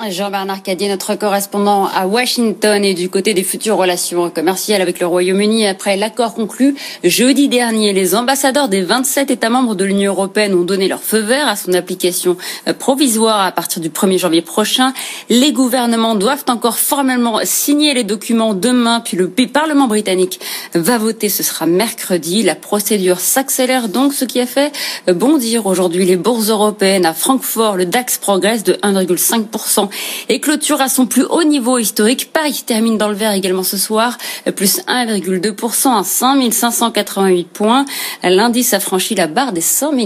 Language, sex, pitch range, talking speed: French, female, 195-255 Hz, 165 wpm